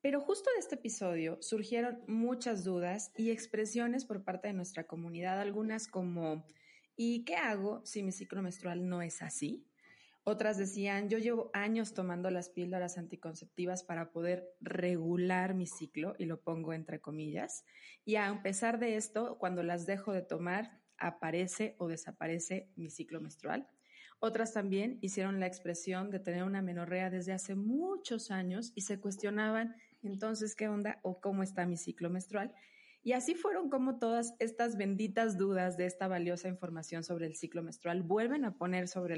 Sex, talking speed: female, 165 wpm